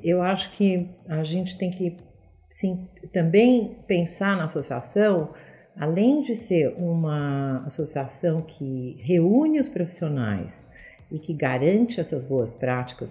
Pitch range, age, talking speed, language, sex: 160-220 Hz, 50-69, 120 wpm, Portuguese, female